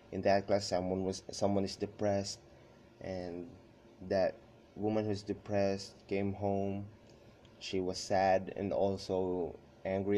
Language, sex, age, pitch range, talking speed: English, male, 20-39, 95-115 Hz, 130 wpm